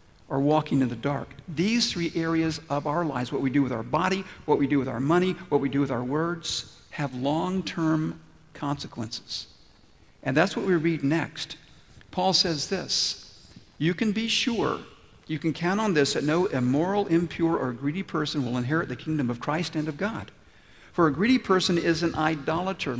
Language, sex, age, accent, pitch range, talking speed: English, male, 50-69, American, 140-180 Hz, 190 wpm